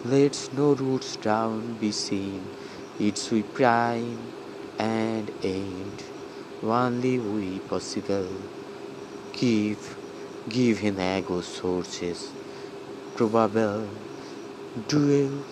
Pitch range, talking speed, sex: 100-135 Hz, 80 wpm, male